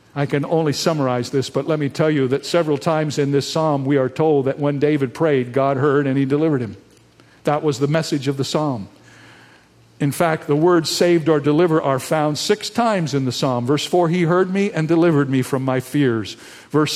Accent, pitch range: American, 130-160 Hz